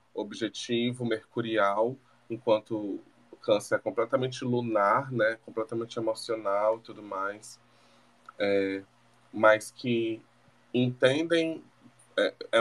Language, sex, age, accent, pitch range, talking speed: Portuguese, male, 20-39, Brazilian, 120-155 Hz, 90 wpm